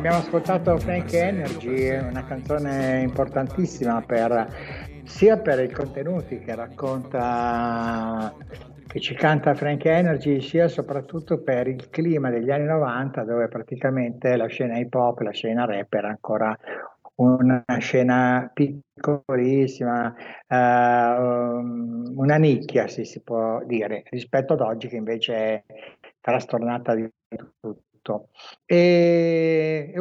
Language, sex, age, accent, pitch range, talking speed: Italian, male, 60-79, native, 115-145 Hz, 115 wpm